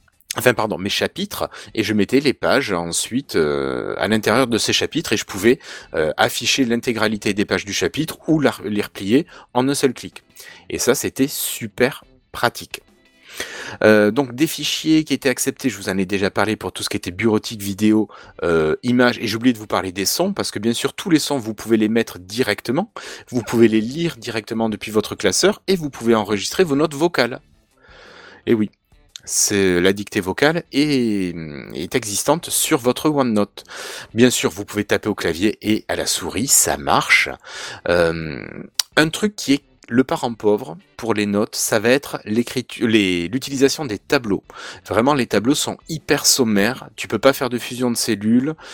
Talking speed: 190 wpm